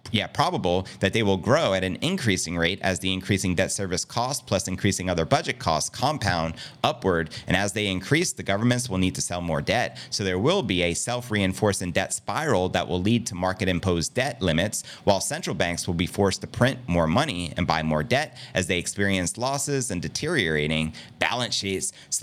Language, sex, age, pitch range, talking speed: English, male, 30-49, 95-125 Hz, 195 wpm